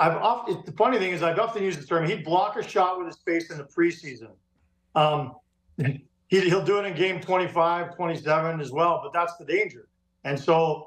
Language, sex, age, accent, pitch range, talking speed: English, male, 50-69, American, 145-185 Hz, 195 wpm